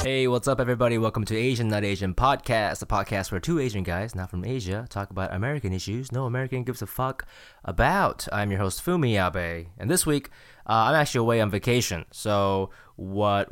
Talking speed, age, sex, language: 200 wpm, 20-39, male, English